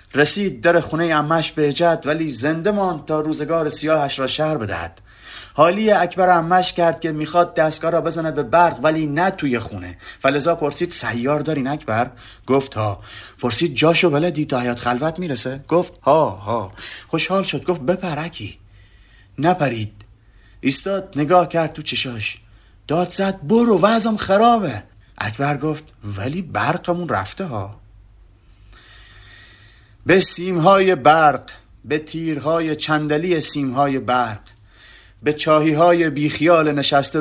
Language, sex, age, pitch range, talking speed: Persian, male, 30-49, 115-160 Hz, 130 wpm